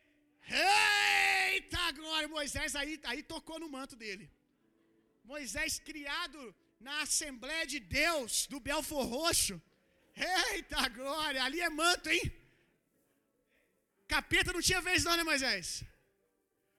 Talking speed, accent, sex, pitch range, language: 110 wpm, Brazilian, male, 280-375 Hz, Gujarati